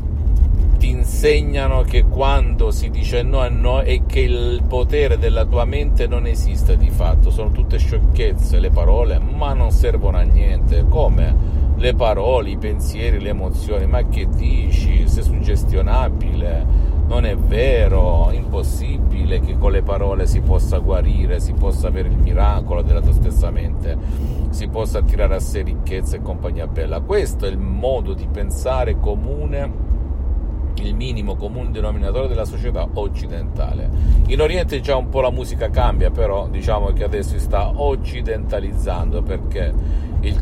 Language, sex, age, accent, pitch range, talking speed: Italian, male, 50-69, native, 70-80 Hz, 155 wpm